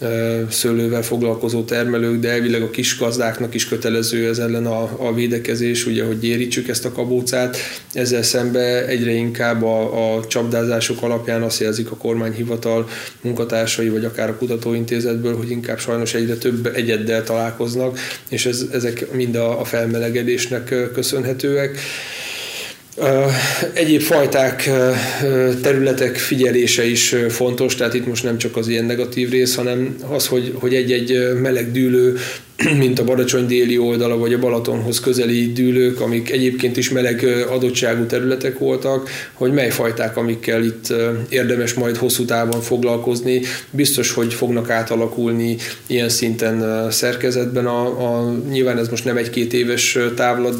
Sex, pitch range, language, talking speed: male, 115-125 Hz, Hungarian, 135 wpm